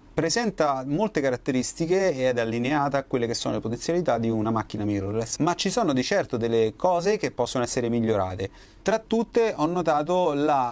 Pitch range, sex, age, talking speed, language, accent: 115-150 Hz, male, 30-49, 180 wpm, Italian, native